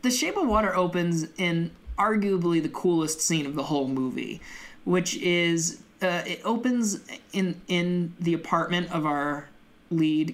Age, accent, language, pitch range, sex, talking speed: 20-39, American, English, 145-185 Hz, male, 150 wpm